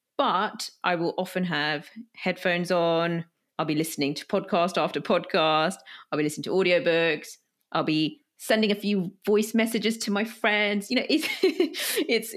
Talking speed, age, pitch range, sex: 160 wpm, 30-49, 160-230 Hz, female